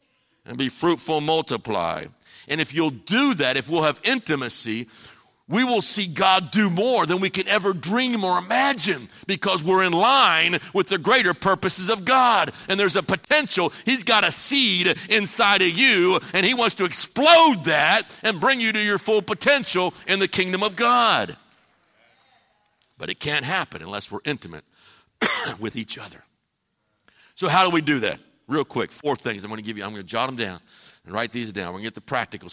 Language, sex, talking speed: English, male, 190 wpm